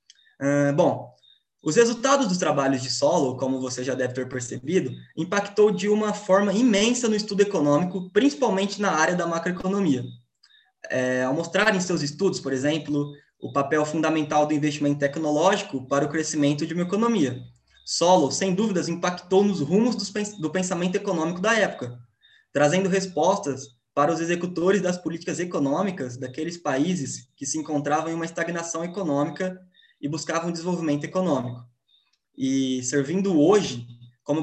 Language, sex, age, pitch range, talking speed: Portuguese, male, 20-39, 145-195 Hz, 145 wpm